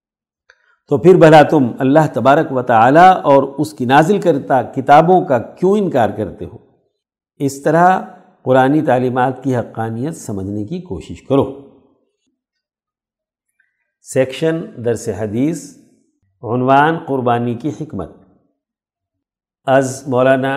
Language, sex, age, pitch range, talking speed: Urdu, male, 50-69, 120-160 Hz, 110 wpm